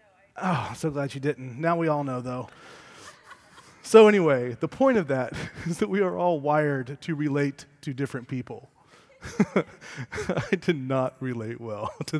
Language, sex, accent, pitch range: English, male, American, 135-185 Hz